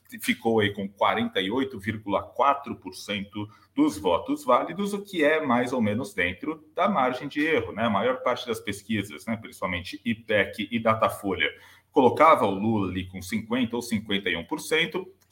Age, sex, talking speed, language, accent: 40-59, male, 145 wpm, Portuguese, Brazilian